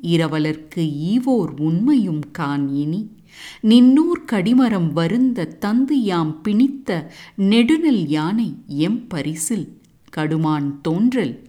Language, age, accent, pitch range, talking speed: English, 50-69, Indian, 155-240 Hz, 85 wpm